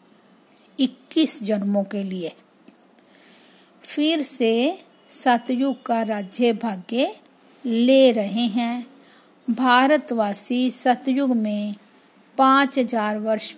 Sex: female